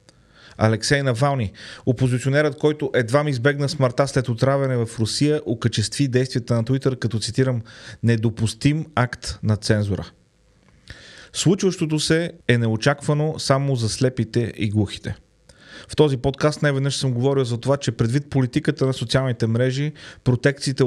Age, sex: 30-49, male